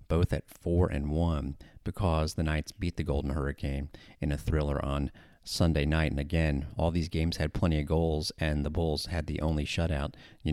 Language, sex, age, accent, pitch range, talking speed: English, male, 40-59, American, 75-85 Hz, 200 wpm